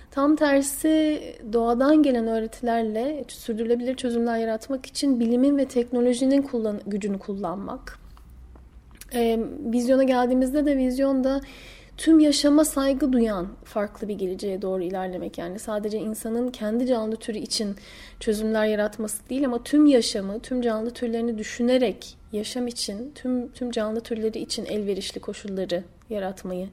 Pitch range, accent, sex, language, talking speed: 210-255 Hz, native, female, Turkish, 125 wpm